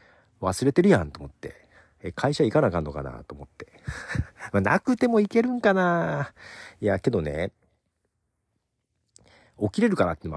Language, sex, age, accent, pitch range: Japanese, male, 50-69, native, 80-120 Hz